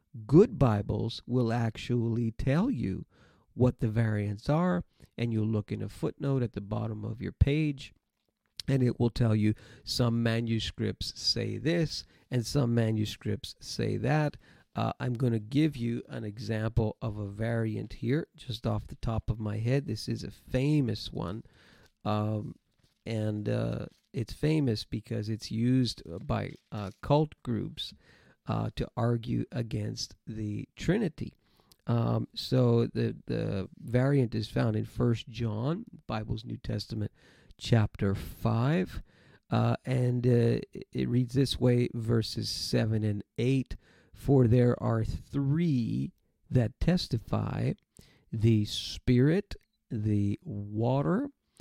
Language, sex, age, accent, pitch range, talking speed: English, male, 40-59, American, 110-125 Hz, 135 wpm